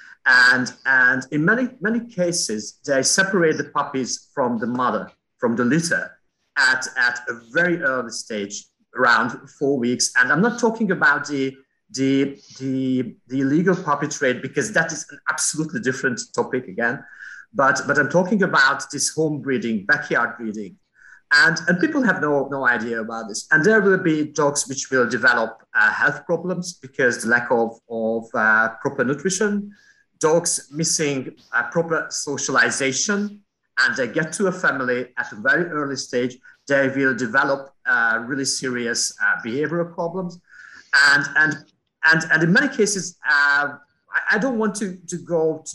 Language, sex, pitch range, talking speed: English, male, 130-185 Hz, 165 wpm